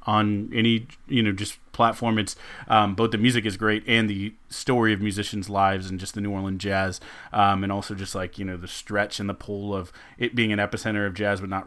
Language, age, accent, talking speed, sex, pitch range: English, 30-49, American, 235 wpm, male, 100-115 Hz